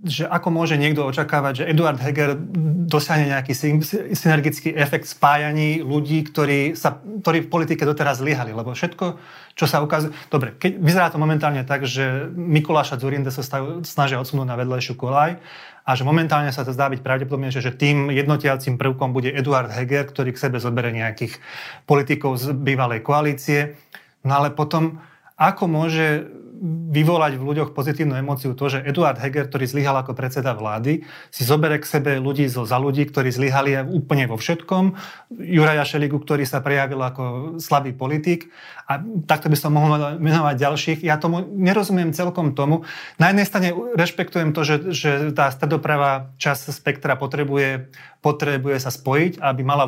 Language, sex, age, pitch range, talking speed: Slovak, male, 30-49, 135-155 Hz, 160 wpm